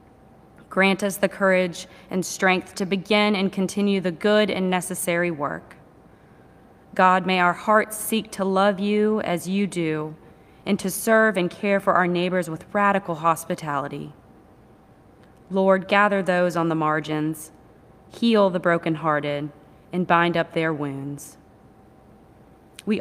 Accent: American